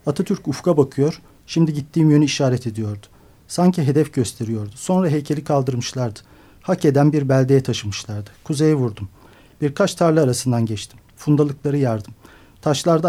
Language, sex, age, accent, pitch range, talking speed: Turkish, male, 40-59, native, 115-155 Hz, 130 wpm